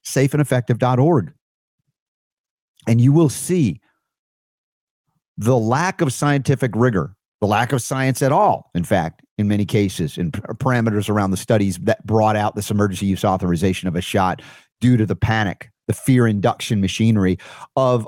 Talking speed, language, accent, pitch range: 155 wpm, English, American, 95-130 Hz